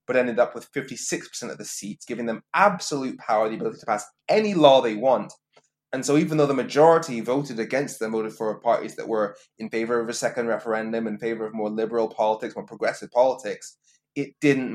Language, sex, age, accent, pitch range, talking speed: English, male, 20-39, British, 110-130 Hz, 205 wpm